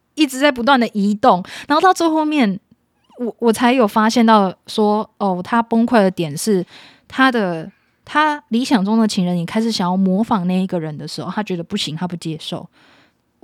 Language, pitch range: Chinese, 185-230 Hz